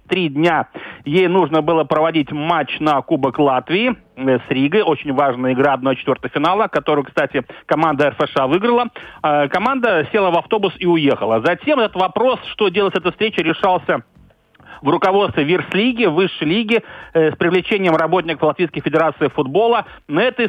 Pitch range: 150-195 Hz